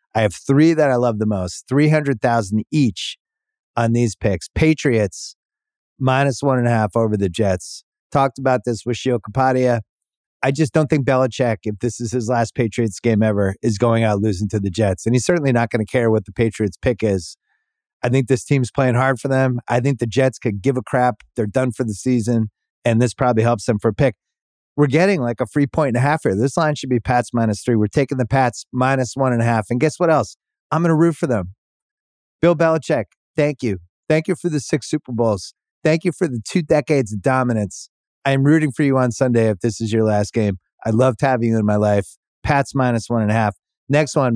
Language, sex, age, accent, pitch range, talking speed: English, male, 30-49, American, 110-140 Hz, 230 wpm